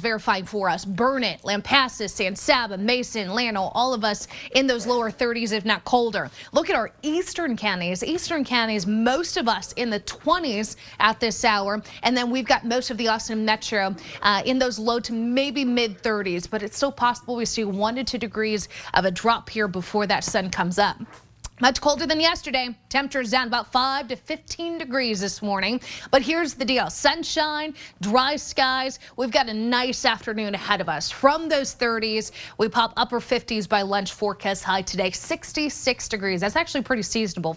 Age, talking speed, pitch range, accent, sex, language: 30-49, 185 wpm, 210-265 Hz, American, female, English